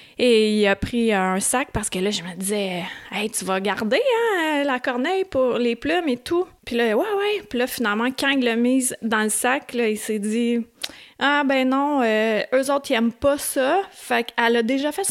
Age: 30-49